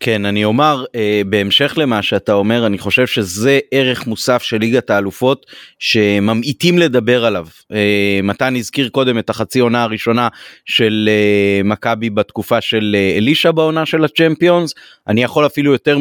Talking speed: 155 wpm